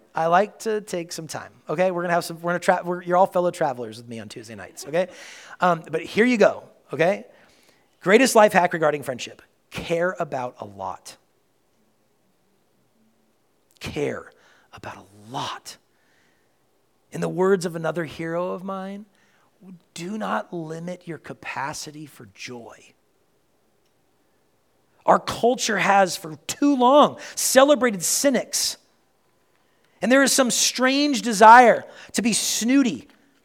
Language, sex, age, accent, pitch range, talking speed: English, male, 40-59, American, 160-250 Hz, 135 wpm